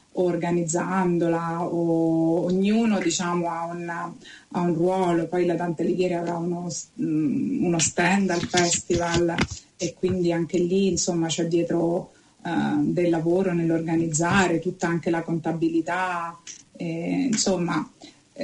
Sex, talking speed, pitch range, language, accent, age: female, 115 wpm, 170-190 Hz, Italian, native, 30-49